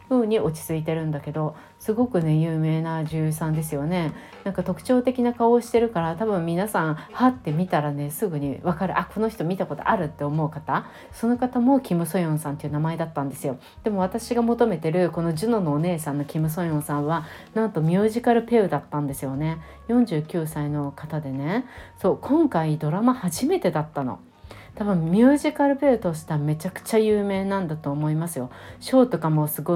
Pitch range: 150-220 Hz